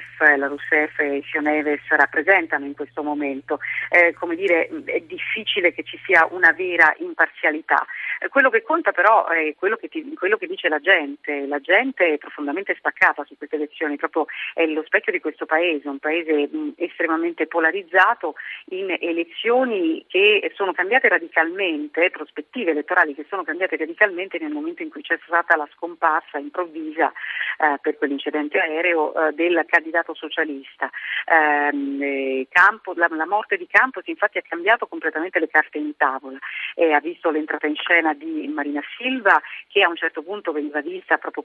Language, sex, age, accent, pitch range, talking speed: Italian, female, 40-59, native, 150-180 Hz, 160 wpm